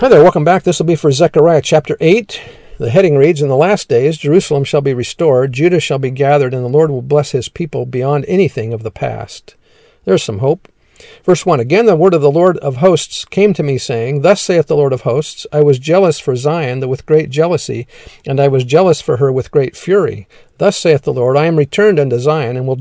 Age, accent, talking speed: 50-69, American, 235 wpm